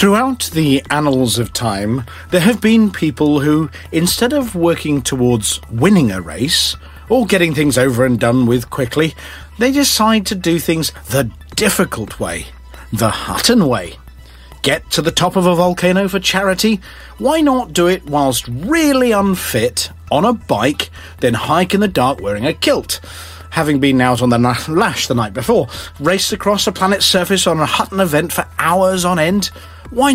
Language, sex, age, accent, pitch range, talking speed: English, male, 40-59, British, 115-190 Hz, 175 wpm